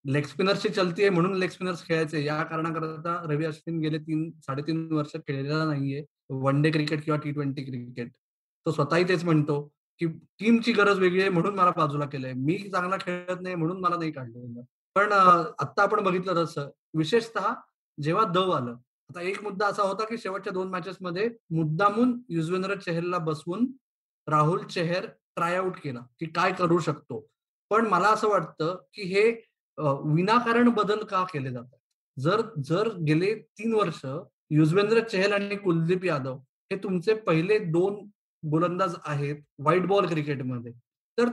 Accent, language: native, Marathi